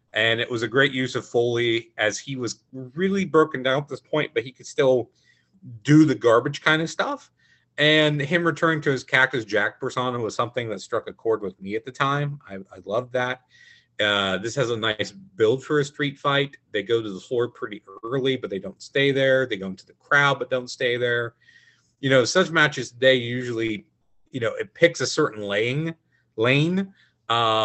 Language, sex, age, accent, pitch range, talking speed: English, male, 30-49, American, 115-140 Hz, 210 wpm